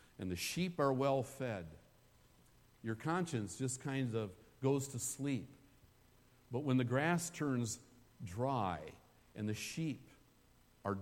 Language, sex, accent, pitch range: English, male, American, 100-150 Hz